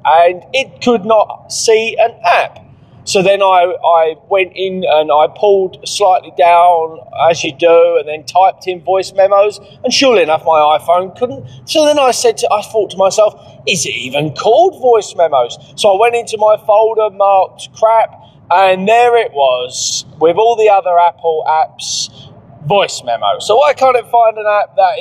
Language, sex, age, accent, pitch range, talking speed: English, male, 20-39, British, 150-205 Hz, 180 wpm